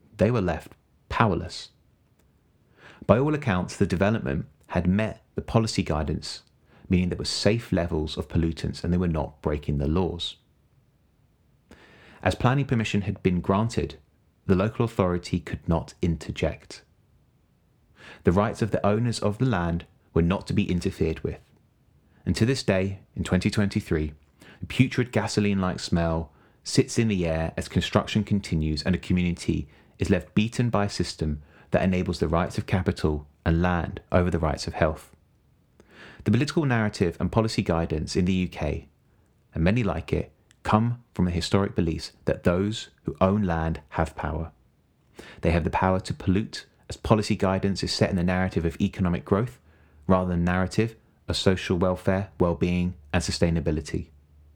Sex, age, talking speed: male, 30-49, 160 wpm